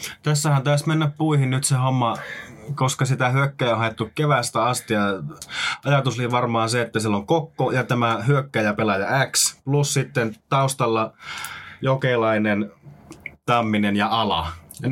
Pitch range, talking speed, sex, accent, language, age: 105-135 Hz, 145 wpm, male, native, Finnish, 20-39